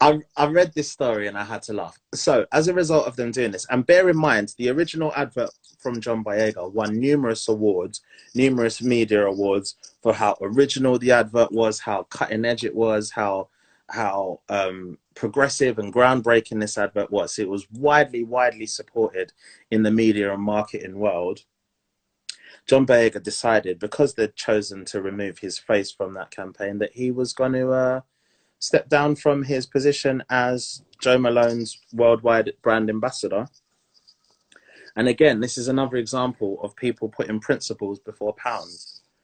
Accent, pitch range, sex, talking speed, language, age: British, 105-130 Hz, male, 160 wpm, English, 30-49